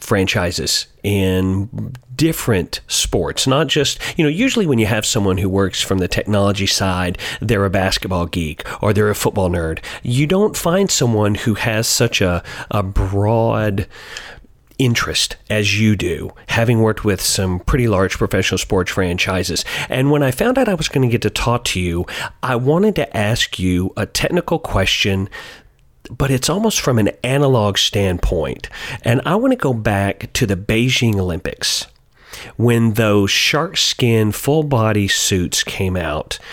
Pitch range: 95-130 Hz